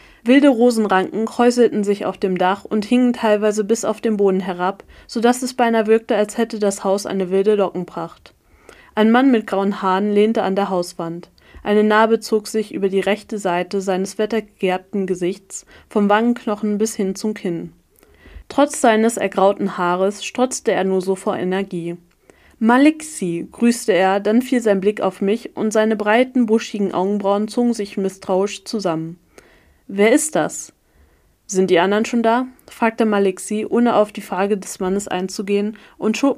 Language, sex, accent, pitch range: German, female, German, 190-225 Hz